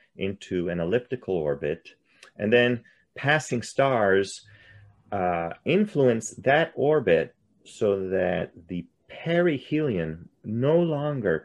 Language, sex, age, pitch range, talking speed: English, male, 30-49, 95-150 Hz, 95 wpm